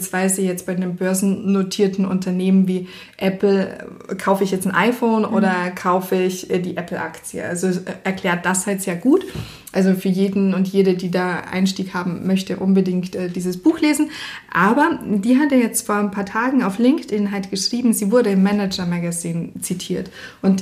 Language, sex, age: German, female, 20-39